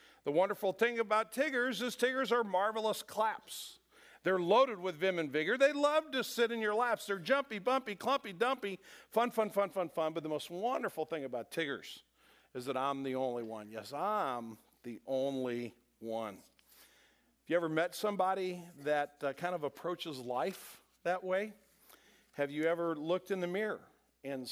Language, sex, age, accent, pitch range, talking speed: English, male, 50-69, American, 135-200 Hz, 175 wpm